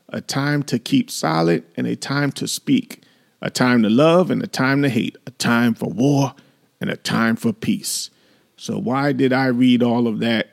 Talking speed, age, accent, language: 205 wpm, 40-59, American, English